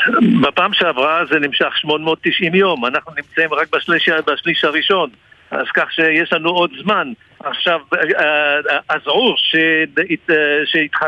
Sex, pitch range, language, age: male, 170-215 Hz, Hebrew, 60-79